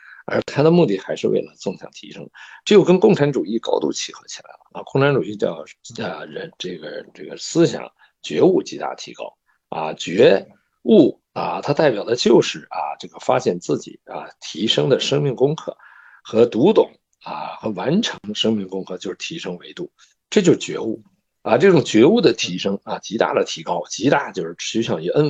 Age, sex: 50-69, male